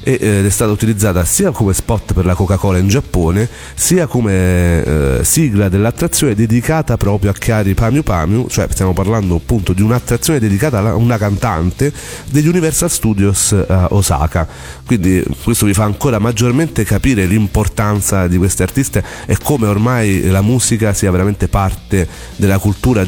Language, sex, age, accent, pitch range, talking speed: Italian, male, 40-59, native, 90-110 Hz, 155 wpm